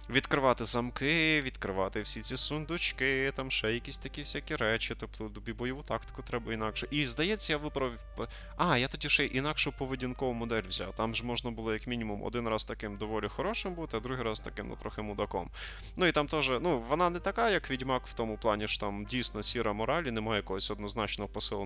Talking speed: 200 wpm